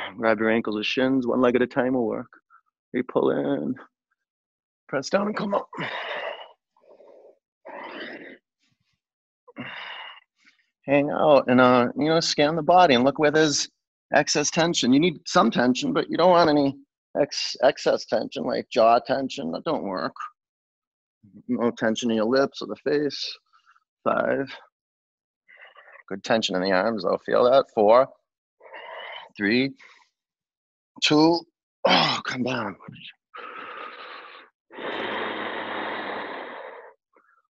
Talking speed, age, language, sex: 120 wpm, 30-49, English, male